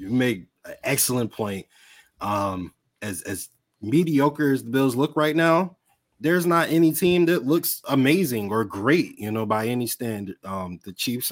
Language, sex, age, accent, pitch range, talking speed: English, male, 20-39, American, 95-130 Hz, 170 wpm